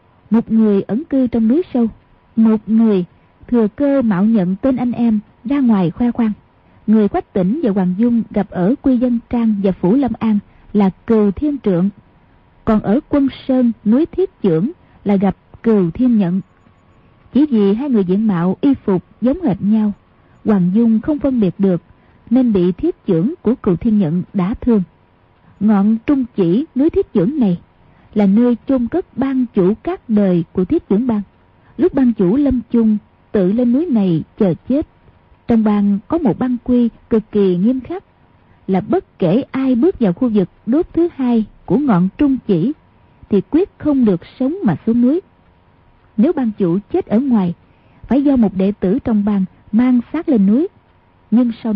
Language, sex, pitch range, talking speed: Vietnamese, female, 195-260 Hz, 185 wpm